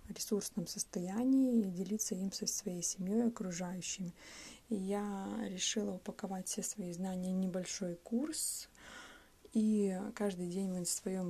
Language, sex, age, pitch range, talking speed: Russian, female, 20-39, 180-220 Hz, 125 wpm